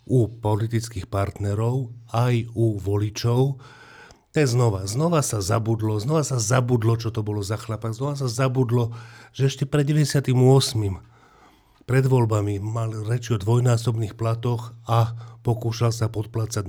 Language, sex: Slovak, male